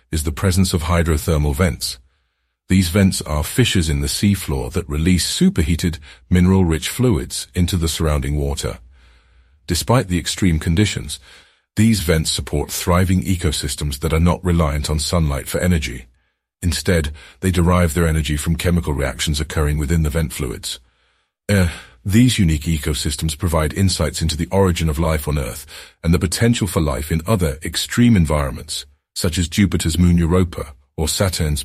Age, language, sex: 50-69, English, male